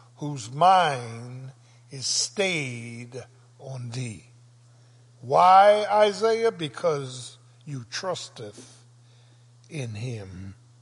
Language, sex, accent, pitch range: English, male, American, 120-170 Hz